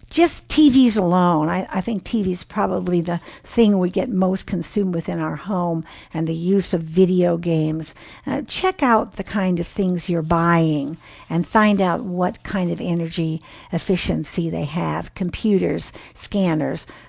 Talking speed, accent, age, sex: 155 wpm, American, 60-79, female